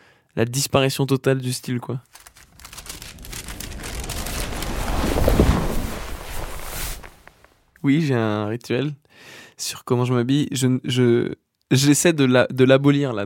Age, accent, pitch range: 20-39, French, 120-140 Hz